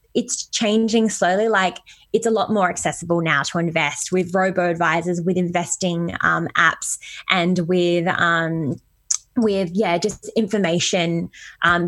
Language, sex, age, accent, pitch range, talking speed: English, female, 20-39, Australian, 175-220 Hz, 135 wpm